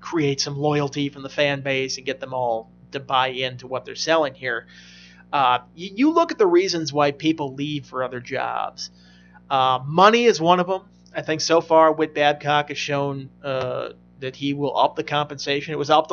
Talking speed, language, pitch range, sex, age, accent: 205 wpm, English, 140-160 Hz, male, 30-49, American